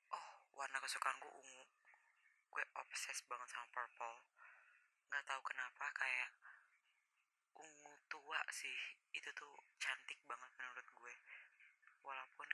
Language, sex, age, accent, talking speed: Indonesian, female, 20-39, native, 100 wpm